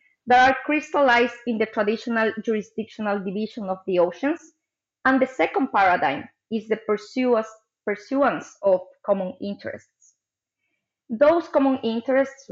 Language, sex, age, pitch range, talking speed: English, female, 20-39, 200-260 Hz, 115 wpm